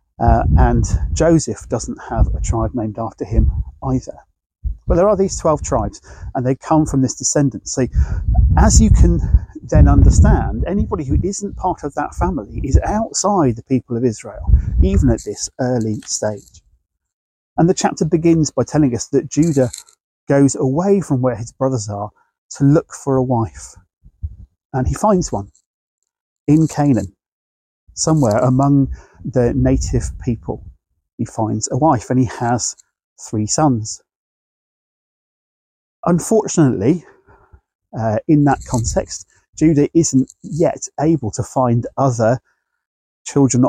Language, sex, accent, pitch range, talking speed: English, male, British, 100-145 Hz, 140 wpm